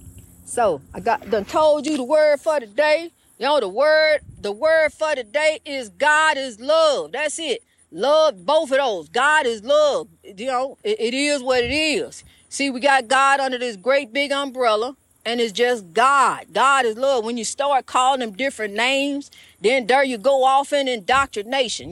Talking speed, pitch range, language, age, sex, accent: 190 wpm, 260-320 Hz, English, 40-59, female, American